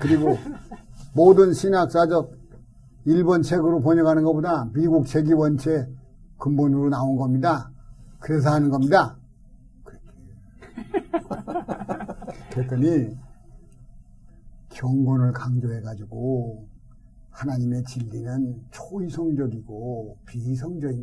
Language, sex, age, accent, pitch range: Korean, male, 50-69, native, 115-155 Hz